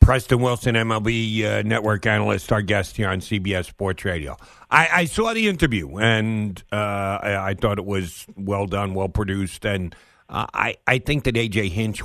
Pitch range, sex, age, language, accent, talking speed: 100-165 Hz, male, 50-69, English, American, 185 wpm